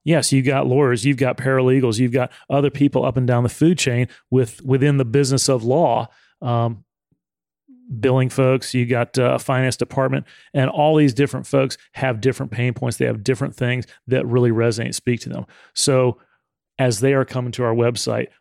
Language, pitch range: English, 120-140 Hz